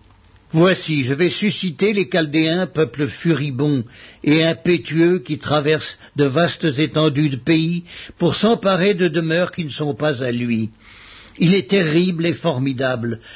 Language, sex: French, male